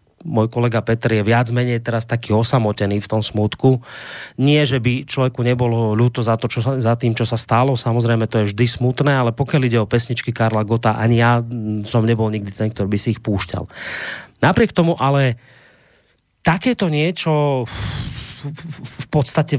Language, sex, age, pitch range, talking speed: Slovak, male, 30-49, 115-135 Hz, 170 wpm